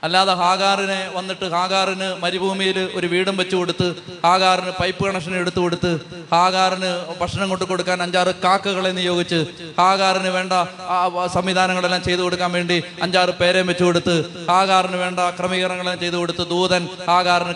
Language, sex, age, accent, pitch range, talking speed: Malayalam, male, 30-49, native, 160-185 Hz, 130 wpm